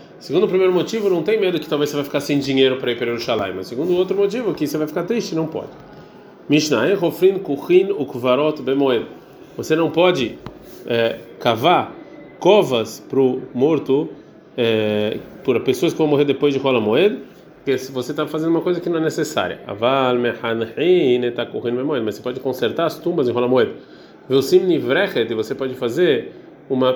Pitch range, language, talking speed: 125-165 Hz, Portuguese, 160 wpm